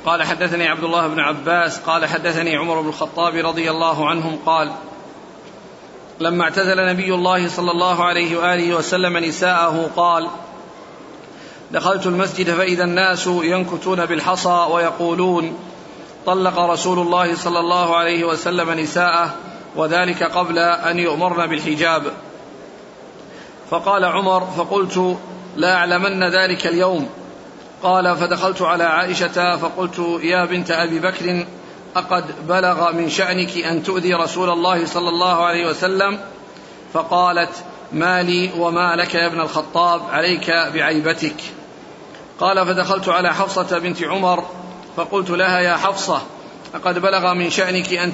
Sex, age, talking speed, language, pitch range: male, 40-59, 120 wpm, Arabic, 170-180 Hz